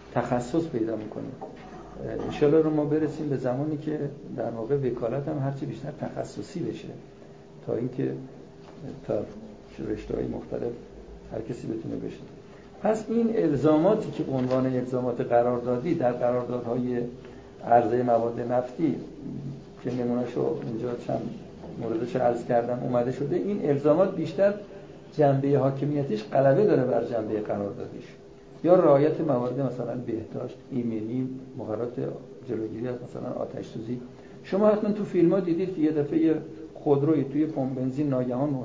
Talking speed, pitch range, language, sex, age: 130 wpm, 120-150 Hz, Persian, male, 60-79